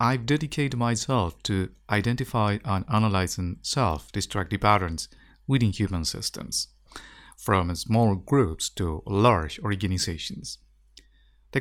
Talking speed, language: 100 wpm, English